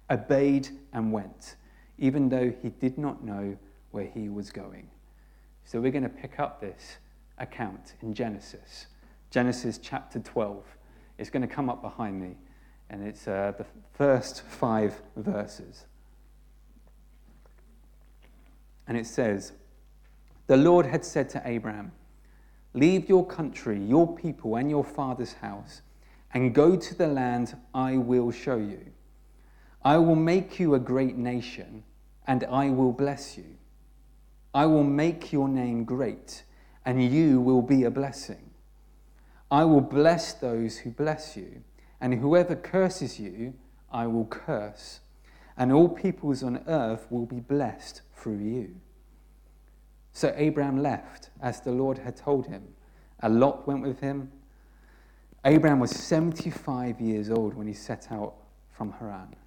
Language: English